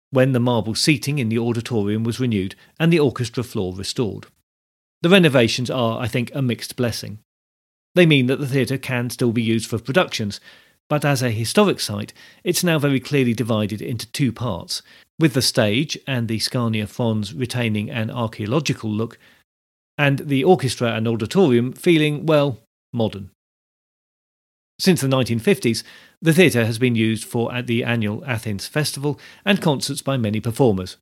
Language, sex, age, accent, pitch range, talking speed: English, male, 40-59, British, 105-140 Hz, 165 wpm